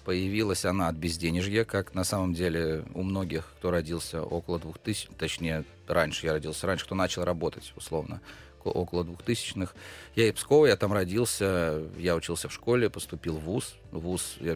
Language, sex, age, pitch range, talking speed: Russian, male, 30-49, 85-100 Hz, 170 wpm